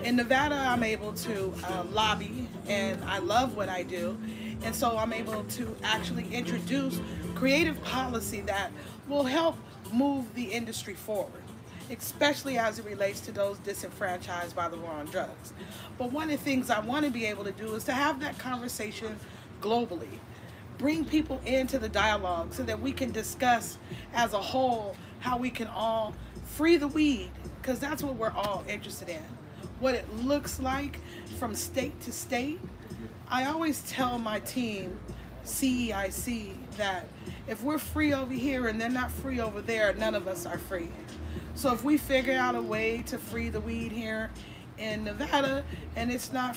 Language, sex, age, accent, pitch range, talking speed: English, female, 30-49, American, 205-265 Hz, 175 wpm